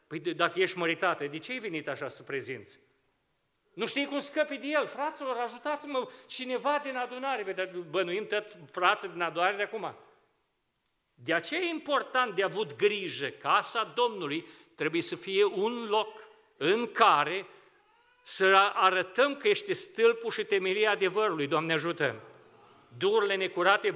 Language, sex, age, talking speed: Romanian, male, 40-59, 145 wpm